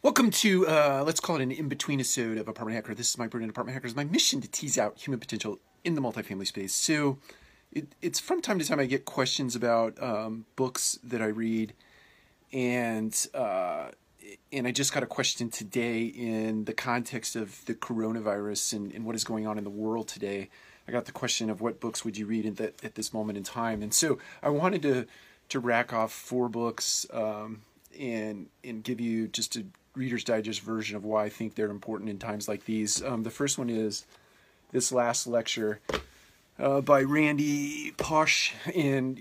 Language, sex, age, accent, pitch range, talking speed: English, male, 30-49, American, 110-130 Hz, 200 wpm